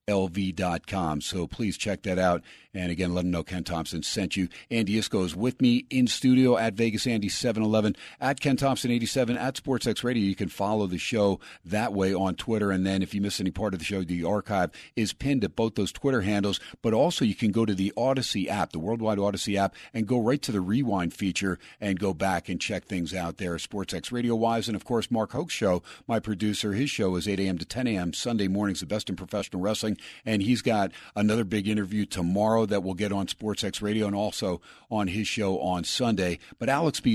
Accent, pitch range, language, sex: American, 95-120 Hz, English, male